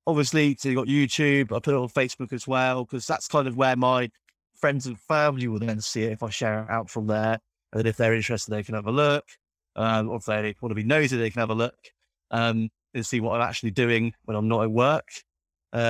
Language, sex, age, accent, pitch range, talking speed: English, male, 30-49, British, 115-140 Hz, 250 wpm